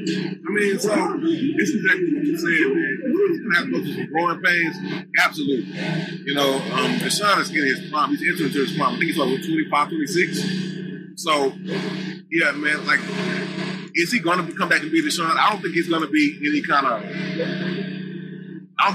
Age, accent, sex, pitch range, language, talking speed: 30-49, American, male, 160-195 Hz, English, 200 wpm